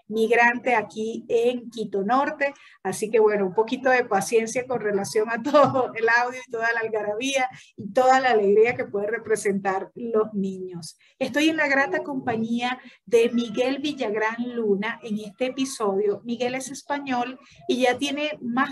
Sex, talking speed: female, 160 wpm